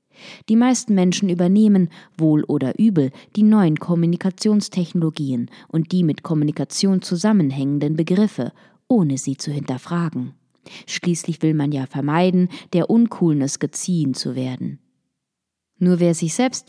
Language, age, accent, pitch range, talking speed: German, 20-39, German, 160-210 Hz, 120 wpm